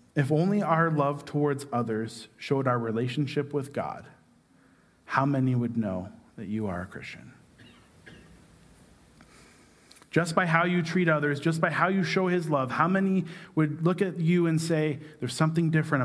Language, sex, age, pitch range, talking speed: English, male, 40-59, 120-160 Hz, 165 wpm